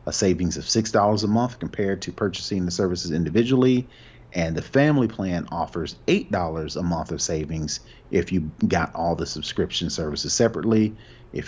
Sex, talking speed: male, 160 wpm